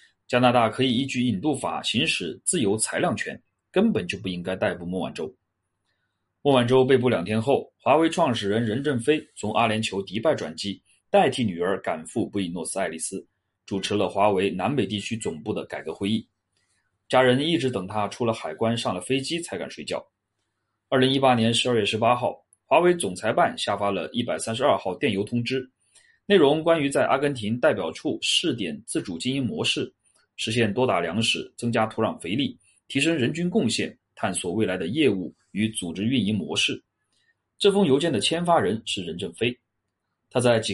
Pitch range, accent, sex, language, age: 100-130 Hz, native, male, Chinese, 30-49